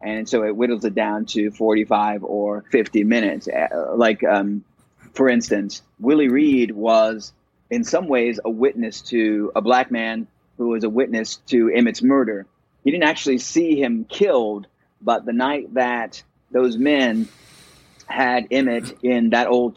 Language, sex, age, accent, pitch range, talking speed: English, male, 30-49, American, 115-125 Hz, 155 wpm